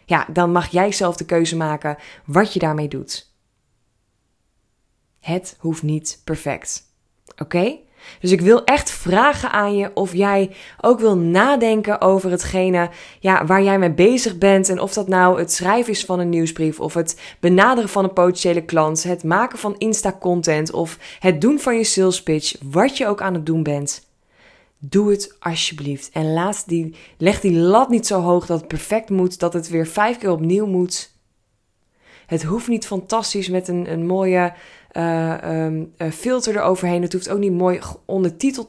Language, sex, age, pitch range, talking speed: Dutch, female, 20-39, 160-195 Hz, 170 wpm